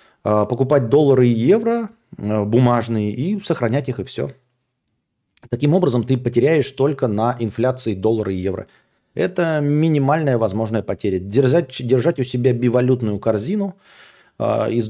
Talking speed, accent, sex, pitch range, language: 125 wpm, native, male, 105-140 Hz, Russian